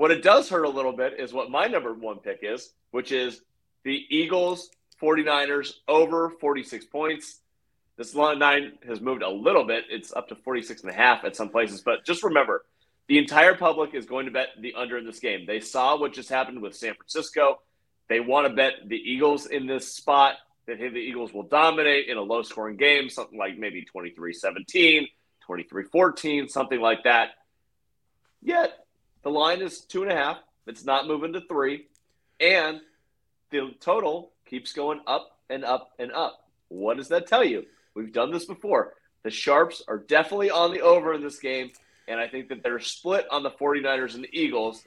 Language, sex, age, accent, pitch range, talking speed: English, male, 30-49, American, 125-160 Hz, 195 wpm